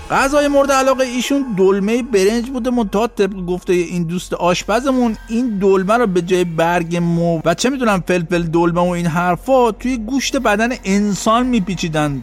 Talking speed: 155 wpm